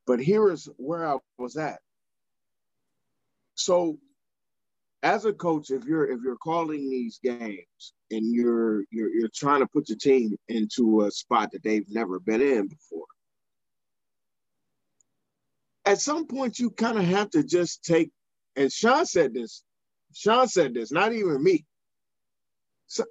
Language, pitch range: English, 130-180 Hz